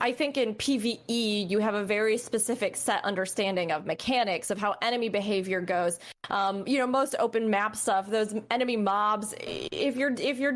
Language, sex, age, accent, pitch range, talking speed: English, female, 20-39, American, 205-255 Hz, 175 wpm